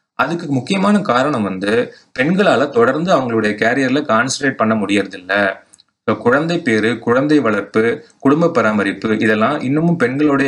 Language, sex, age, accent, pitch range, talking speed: Tamil, male, 30-49, native, 105-150 Hz, 120 wpm